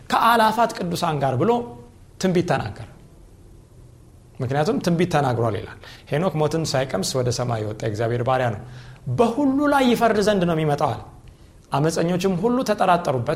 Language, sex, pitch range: Amharic, male, 125-180 Hz